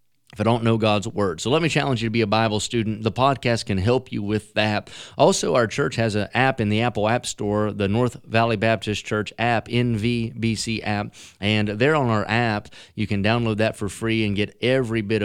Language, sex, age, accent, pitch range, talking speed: English, male, 30-49, American, 105-125 Hz, 225 wpm